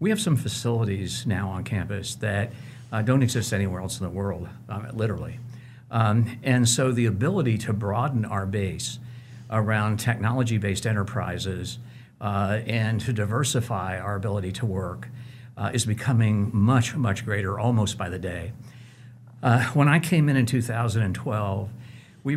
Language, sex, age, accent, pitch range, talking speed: English, male, 60-79, American, 105-125 Hz, 150 wpm